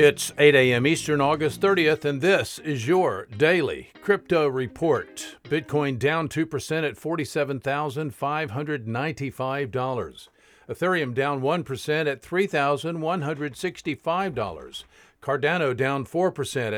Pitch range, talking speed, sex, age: 135-170 Hz, 95 wpm, male, 50-69